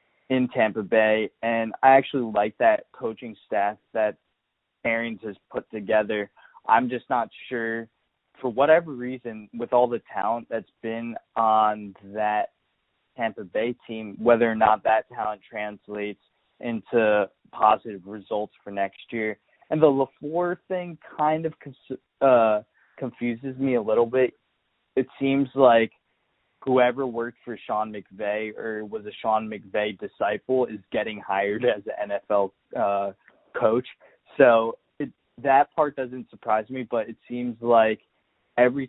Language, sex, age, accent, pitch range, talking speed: English, male, 20-39, American, 105-125 Hz, 140 wpm